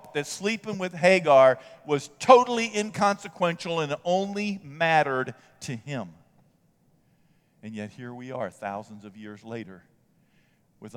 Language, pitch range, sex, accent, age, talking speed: English, 105-130 Hz, male, American, 50-69, 120 wpm